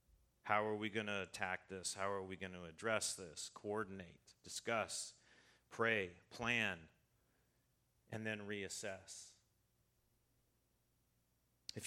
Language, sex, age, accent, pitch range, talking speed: English, male, 40-59, American, 90-115 Hz, 110 wpm